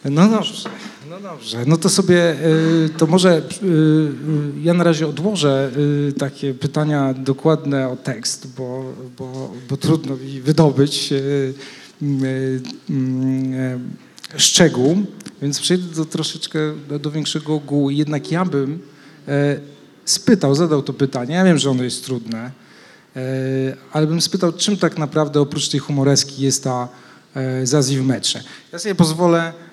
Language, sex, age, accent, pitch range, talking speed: Polish, male, 40-59, native, 130-160 Hz, 125 wpm